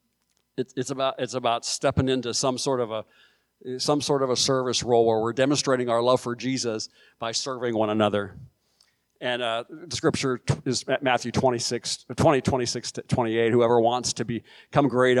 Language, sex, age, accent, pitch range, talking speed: English, male, 50-69, American, 120-140 Hz, 170 wpm